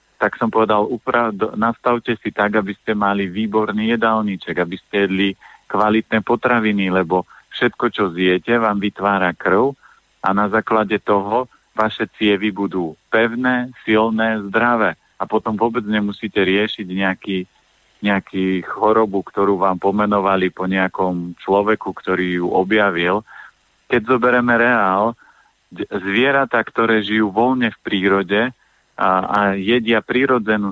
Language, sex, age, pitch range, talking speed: Slovak, male, 40-59, 100-115 Hz, 125 wpm